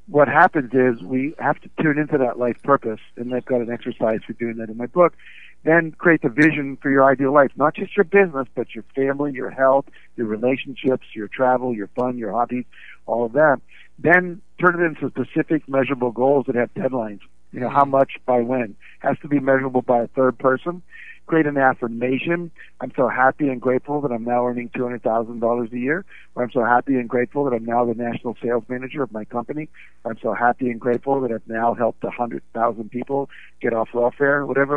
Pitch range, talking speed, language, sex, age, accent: 120-145 Hz, 205 wpm, English, male, 60-79, American